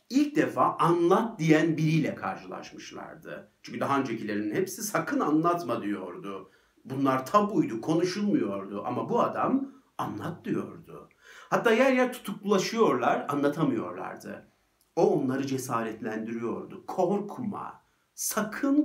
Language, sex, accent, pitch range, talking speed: Turkish, male, native, 130-190 Hz, 100 wpm